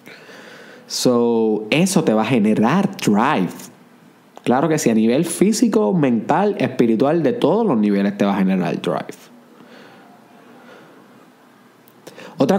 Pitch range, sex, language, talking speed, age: 120-165 Hz, male, Spanish, 120 wpm, 20-39